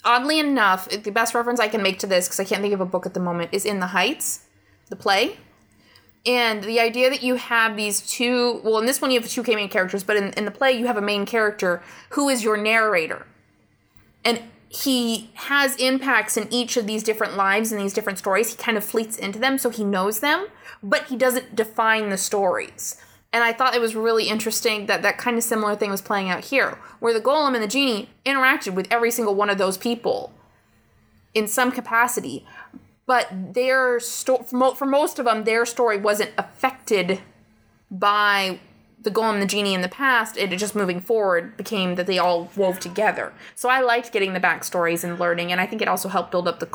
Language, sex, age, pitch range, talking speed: English, female, 20-39, 190-245 Hz, 220 wpm